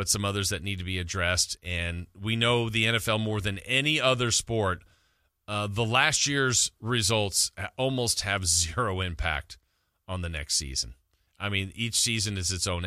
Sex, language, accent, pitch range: male, English, American, 90-115 Hz